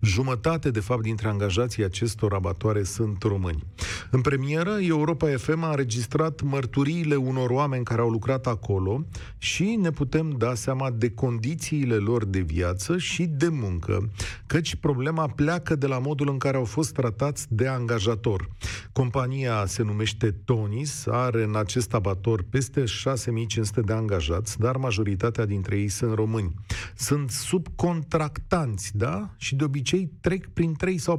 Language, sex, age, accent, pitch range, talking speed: Romanian, male, 40-59, native, 105-145 Hz, 145 wpm